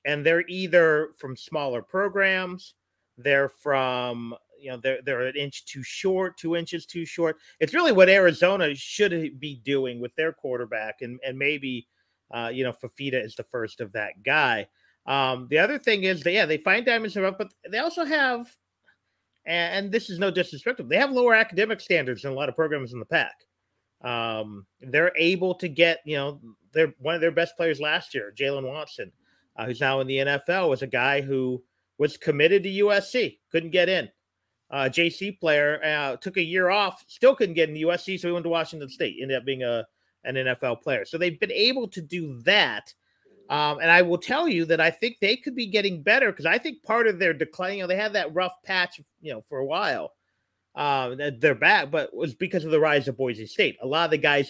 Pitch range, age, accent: 135-185 Hz, 40-59, American